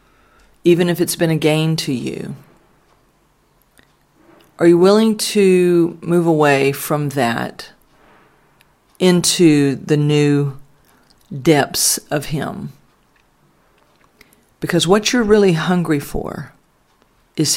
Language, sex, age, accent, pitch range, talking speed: English, female, 50-69, American, 145-180 Hz, 100 wpm